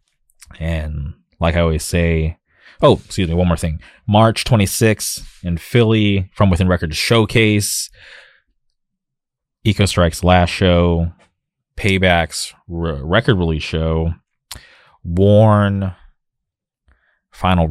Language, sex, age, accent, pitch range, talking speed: English, male, 20-39, American, 80-95 Hz, 100 wpm